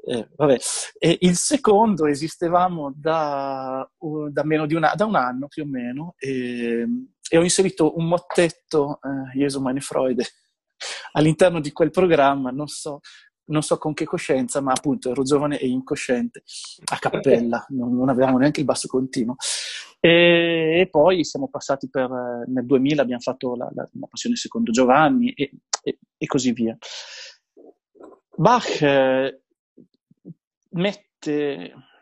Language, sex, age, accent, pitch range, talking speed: Italian, male, 30-49, native, 135-170 Hz, 140 wpm